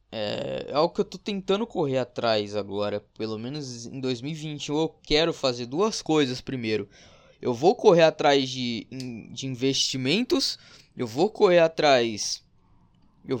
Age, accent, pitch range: 20-39, Brazilian, 120-165 Hz